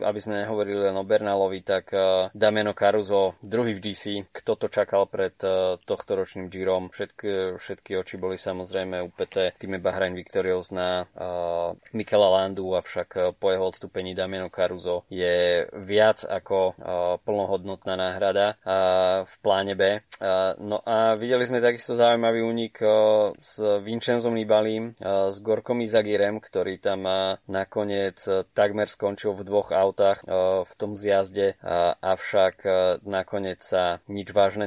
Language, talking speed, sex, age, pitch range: Slovak, 140 wpm, male, 20-39, 95-105 Hz